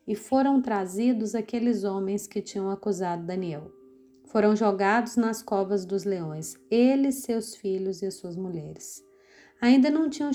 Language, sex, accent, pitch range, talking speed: Portuguese, female, Brazilian, 195-245 Hz, 145 wpm